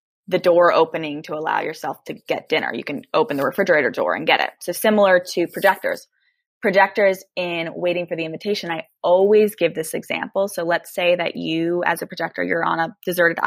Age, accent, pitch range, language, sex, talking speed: 10-29, American, 175-235 Hz, English, female, 200 wpm